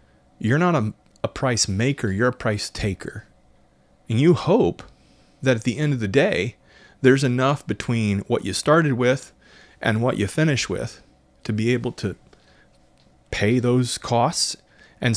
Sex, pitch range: male, 100-135 Hz